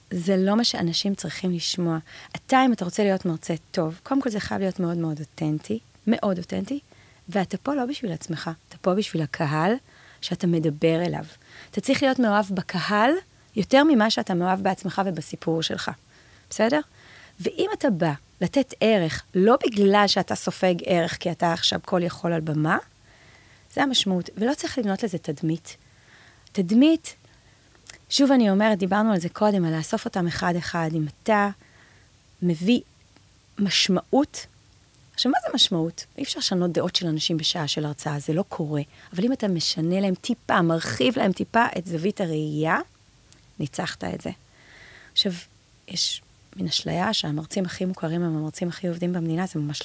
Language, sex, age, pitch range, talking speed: Hebrew, female, 30-49, 165-215 Hz, 160 wpm